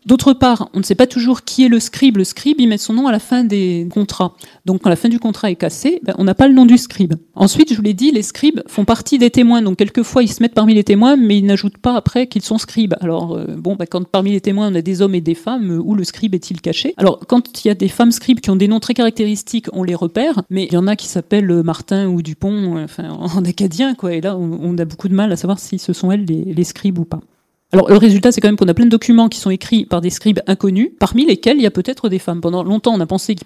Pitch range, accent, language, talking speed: 185-235 Hz, French, French, 290 wpm